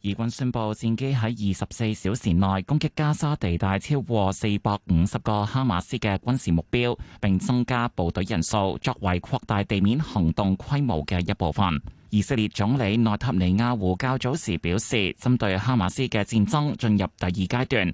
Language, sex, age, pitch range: Chinese, male, 20-39, 95-125 Hz